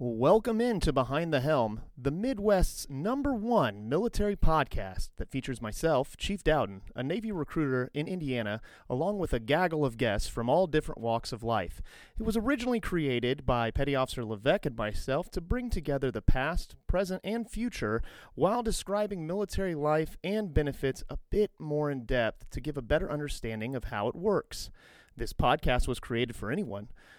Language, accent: English, American